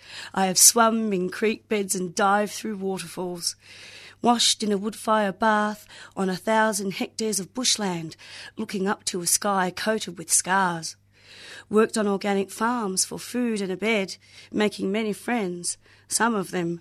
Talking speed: 155 wpm